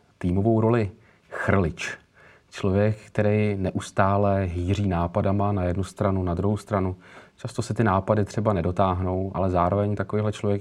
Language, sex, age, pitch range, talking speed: Czech, male, 30-49, 90-105 Hz, 135 wpm